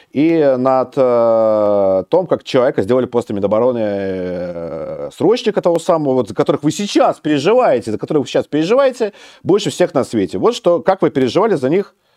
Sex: male